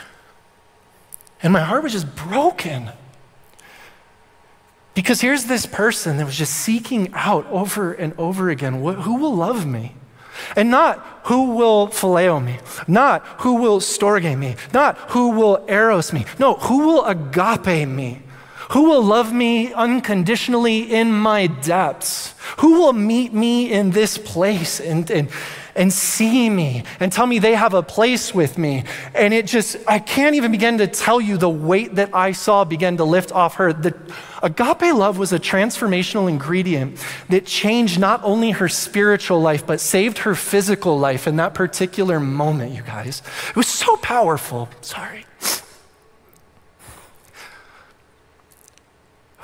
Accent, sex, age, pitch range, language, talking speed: American, male, 30-49, 160-225 Hz, English, 150 wpm